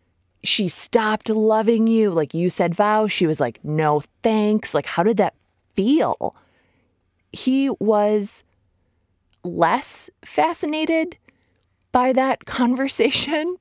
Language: English